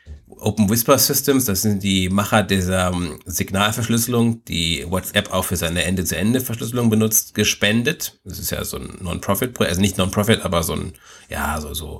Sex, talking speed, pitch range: male, 165 wpm, 95-120 Hz